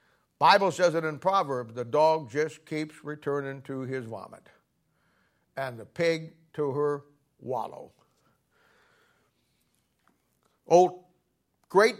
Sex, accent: male, American